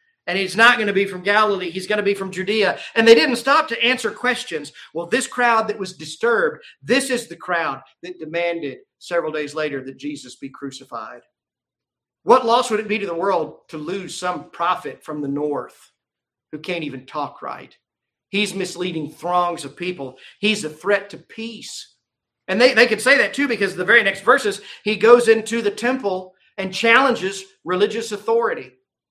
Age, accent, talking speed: 40-59, American, 190 wpm